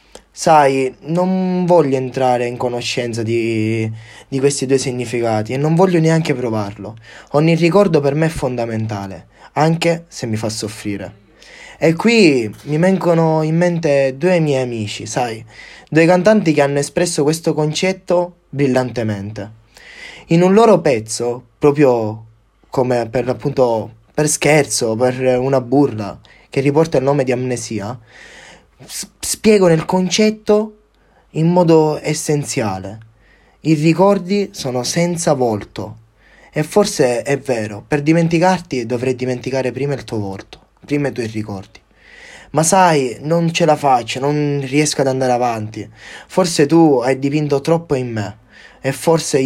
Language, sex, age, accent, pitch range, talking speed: Italian, male, 20-39, native, 120-160 Hz, 135 wpm